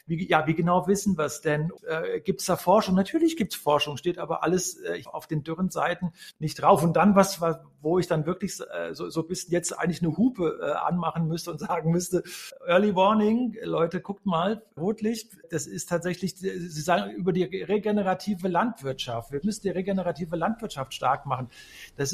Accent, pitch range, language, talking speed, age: German, 165-200 Hz, German, 185 wpm, 50-69